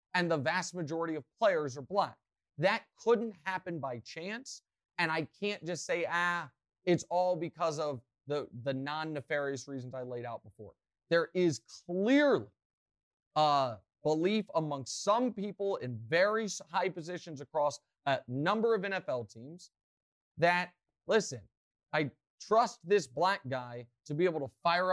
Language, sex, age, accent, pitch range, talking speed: English, male, 30-49, American, 130-185 Hz, 150 wpm